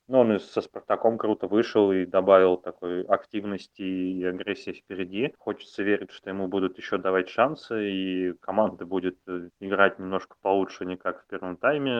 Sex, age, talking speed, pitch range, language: male, 20-39, 160 wpm, 90-105 Hz, Russian